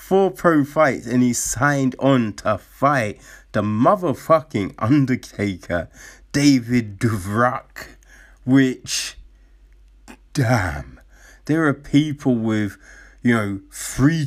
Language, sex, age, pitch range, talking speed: English, male, 20-39, 110-145 Hz, 95 wpm